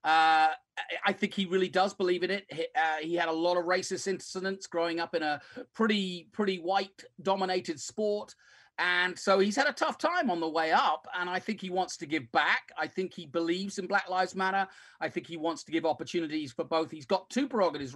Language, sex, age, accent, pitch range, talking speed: English, male, 40-59, British, 165-195 Hz, 225 wpm